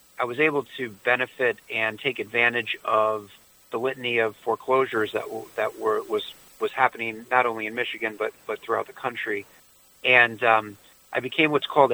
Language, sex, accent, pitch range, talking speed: English, male, American, 110-130 Hz, 175 wpm